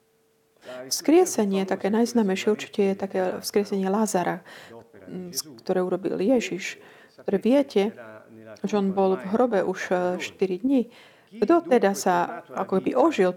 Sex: female